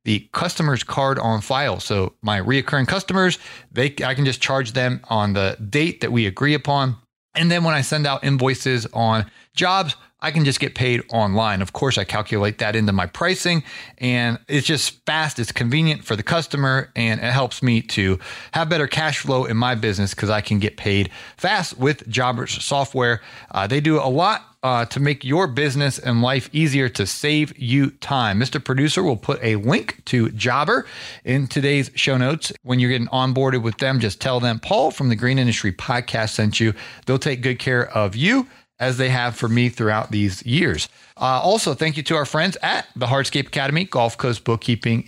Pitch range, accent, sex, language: 115-145 Hz, American, male, English